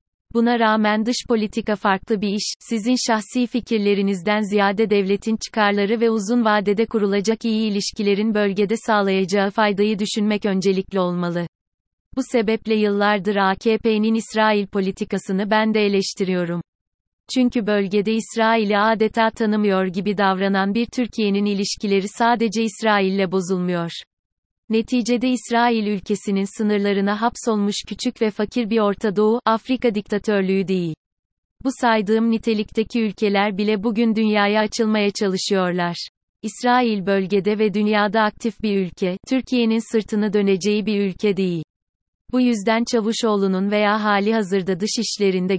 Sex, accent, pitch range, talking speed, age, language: female, native, 195-225 Hz, 120 wpm, 30-49, Turkish